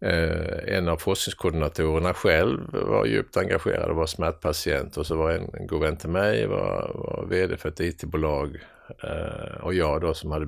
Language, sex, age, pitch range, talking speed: Swedish, male, 50-69, 75-90 Hz, 155 wpm